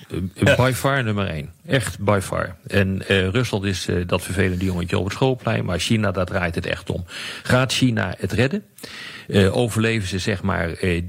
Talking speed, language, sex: 190 wpm, Dutch, male